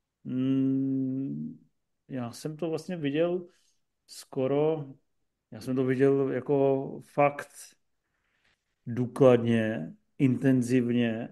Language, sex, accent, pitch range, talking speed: Czech, male, native, 130-145 Hz, 75 wpm